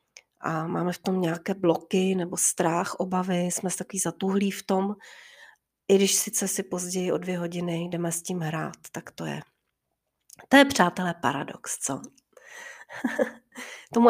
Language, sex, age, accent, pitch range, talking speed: Czech, female, 30-49, native, 185-245 Hz, 155 wpm